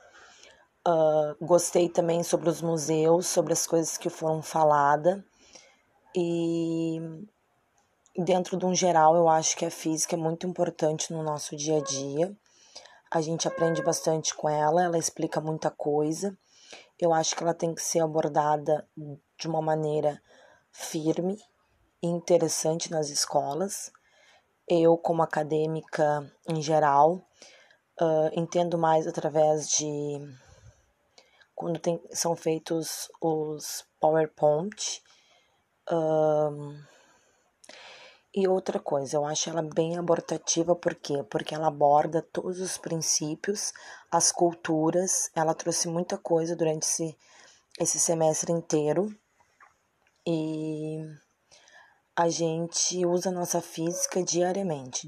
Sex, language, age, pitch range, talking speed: female, Italian, 20-39, 155-175 Hz, 110 wpm